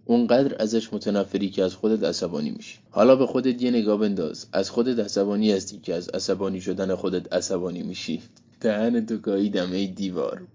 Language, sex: Persian, male